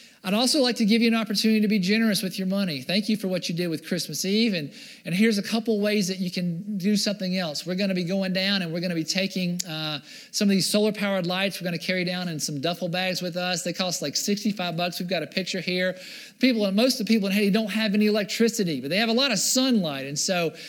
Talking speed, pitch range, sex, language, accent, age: 265 wpm, 175-215 Hz, male, English, American, 50-69